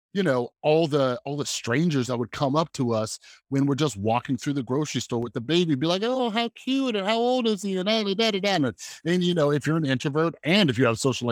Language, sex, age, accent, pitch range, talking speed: English, male, 30-49, American, 120-160 Hz, 250 wpm